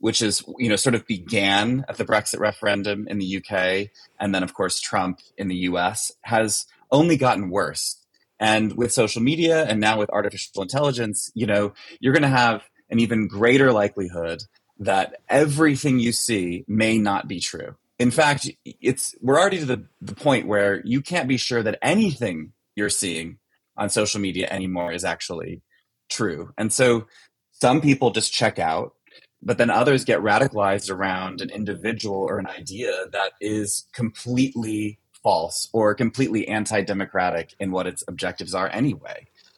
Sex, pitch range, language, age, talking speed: male, 95-115 Hz, English, 20-39, 165 wpm